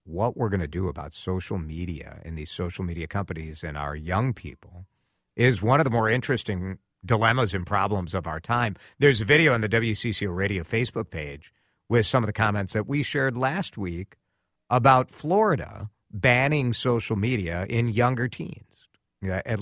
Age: 50-69